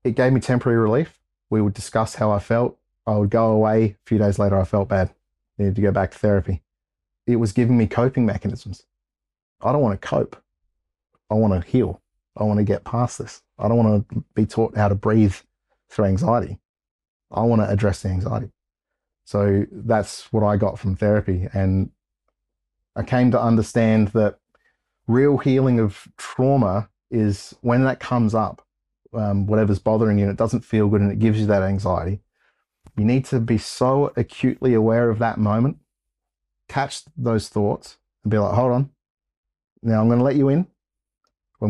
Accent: Australian